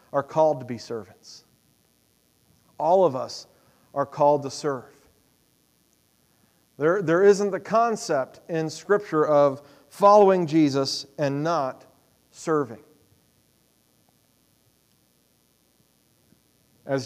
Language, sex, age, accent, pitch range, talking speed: English, male, 40-59, American, 135-180 Hz, 90 wpm